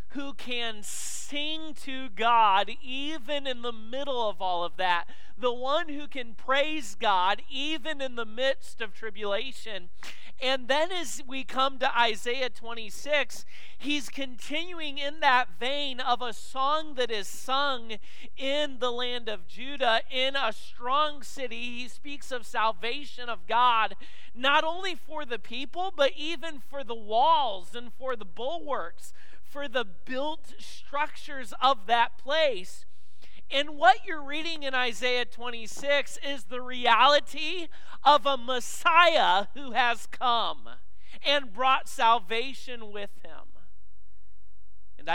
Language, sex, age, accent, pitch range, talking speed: English, male, 40-59, American, 200-275 Hz, 135 wpm